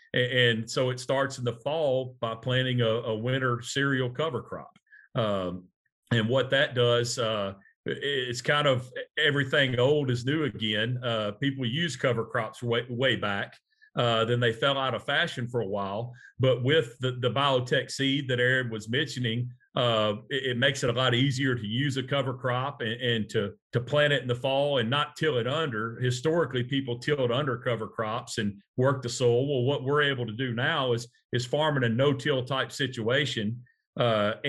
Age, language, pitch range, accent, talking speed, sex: 40-59, English, 120-140 Hz, American, 190 wpm, male